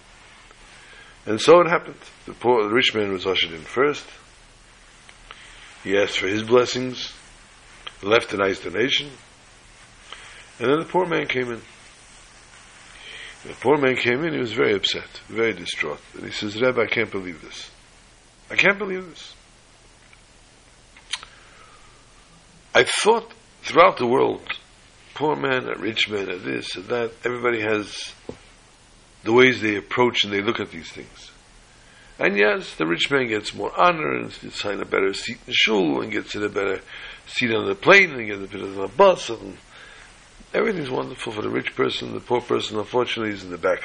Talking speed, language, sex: 170 wpm, English, male